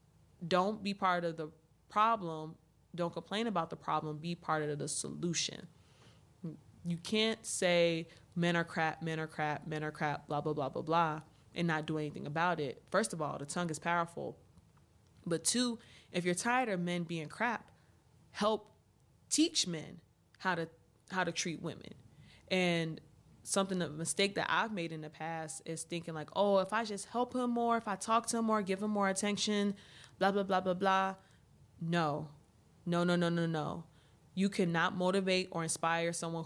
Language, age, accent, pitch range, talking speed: English, 20-39, American, 160-190 Hz, 185 wpm